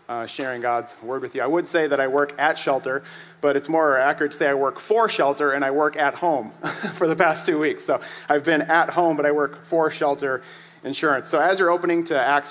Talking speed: 245 wpm